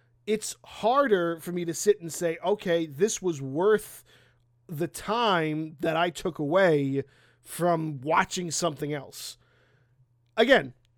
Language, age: English, 30-49